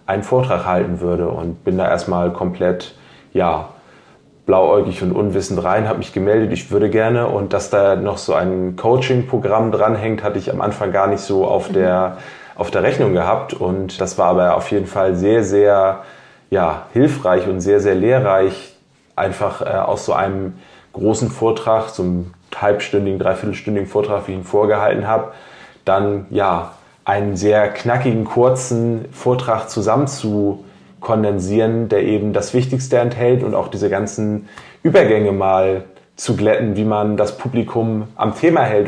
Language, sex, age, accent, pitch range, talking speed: German, male, 20-39, German, 100-115 Hz, 160 wpm